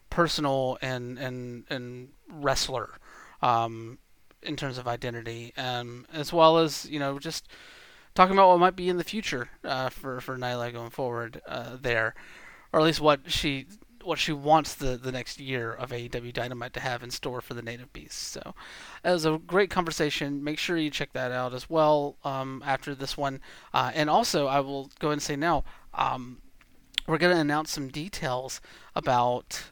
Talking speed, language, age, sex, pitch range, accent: 185 wpm, English, 30-49, male, 130-160 Hz, American